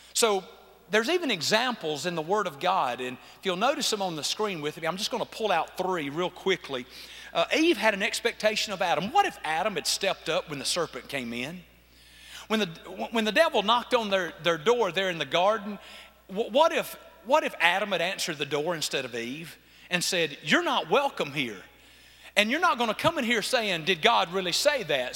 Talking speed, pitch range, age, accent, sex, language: 215 wpm, 190-280 Hz, 40-59, American, male, English